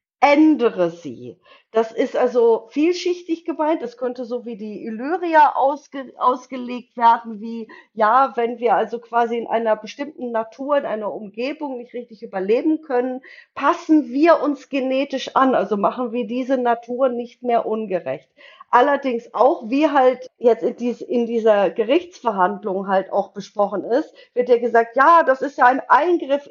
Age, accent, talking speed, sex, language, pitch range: 50-69, German, 150 wpm, female, German, 230-295 Hz